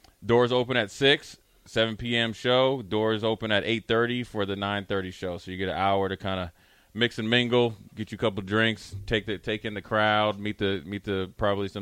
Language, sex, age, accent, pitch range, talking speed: English, male, 20-39, American, 90-110 Hz, 235 wpm